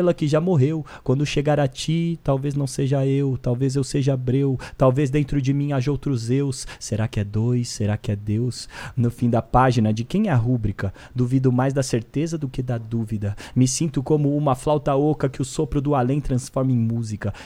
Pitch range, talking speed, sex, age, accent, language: 115-145 Hz, 210 wpm, male, 20-39, Brazilian, Portuguese